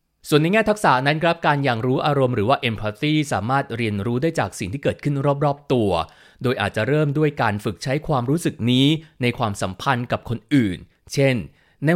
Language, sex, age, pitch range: Thai, male, 30-49, 110-150 Hz